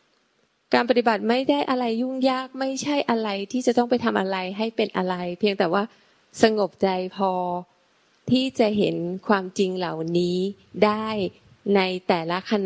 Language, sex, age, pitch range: Thai, female, 20-39, 180-225 Hz